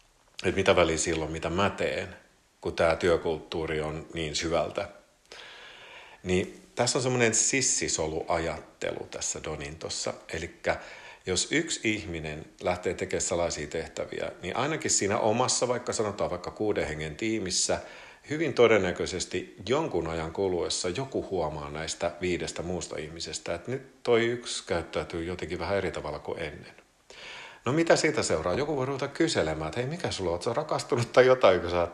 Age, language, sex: 50-69, Finnish, male